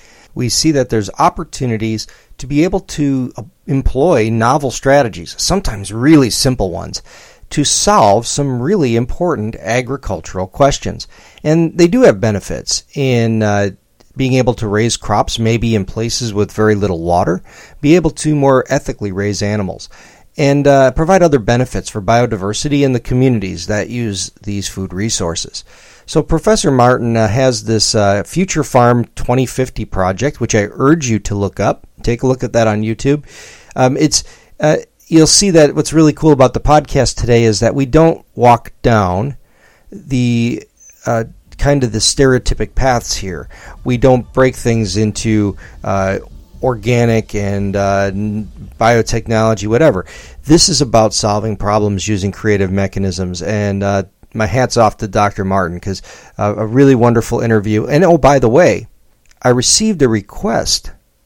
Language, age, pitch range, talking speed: English, 40-59, 105-135 Hz, 155 wpm